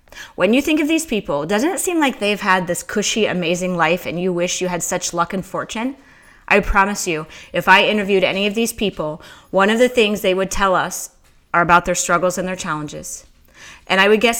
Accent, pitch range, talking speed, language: American, 175-225 Hz, 225 wpm, English